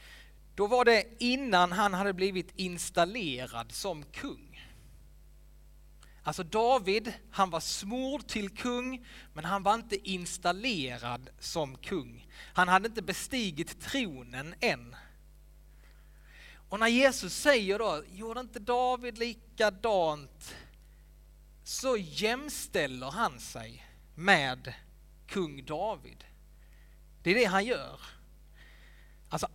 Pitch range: 150-220 Hz